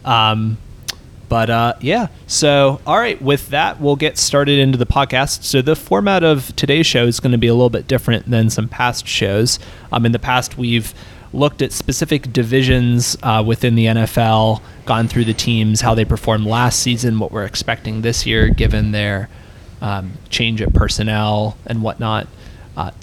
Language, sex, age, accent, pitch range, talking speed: English, male, 30-49, American, 110-125 Hz, 180 wpm